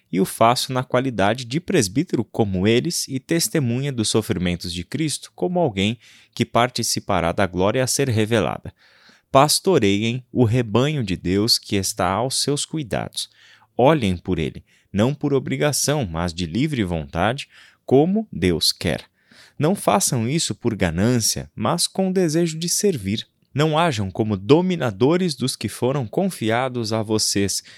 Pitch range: 95-130 Hz